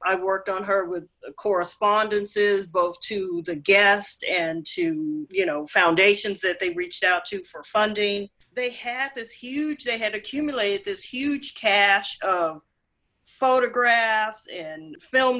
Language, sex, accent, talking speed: English, female, American, 140 wpm